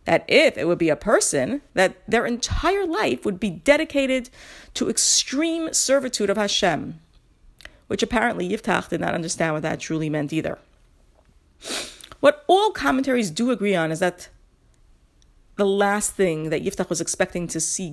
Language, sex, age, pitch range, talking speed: English, female, 40-59, 185-255 Hz, 155 wpm